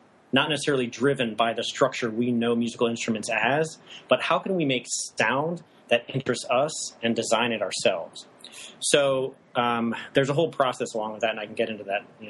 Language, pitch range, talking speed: English, 115-140 Hz, 195 wpm